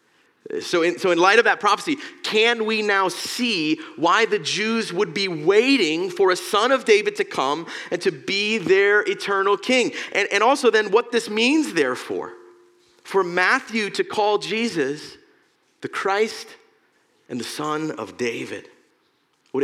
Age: 40-59